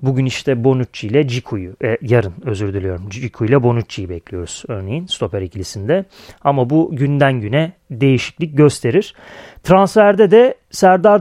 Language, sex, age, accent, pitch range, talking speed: Turkish, male, 30-49, native, 125-160 Hz, 135 wpm